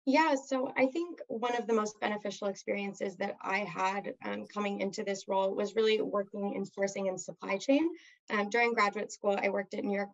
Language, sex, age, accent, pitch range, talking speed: English, female, 20-39, American, 195-225 Hz, 205 wpm